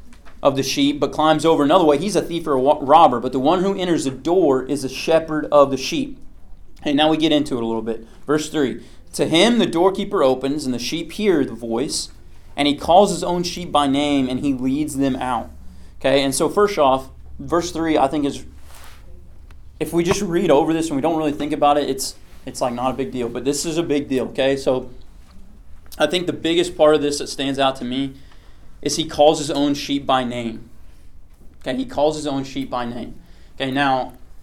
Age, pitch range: 30-49, 115-150 Hz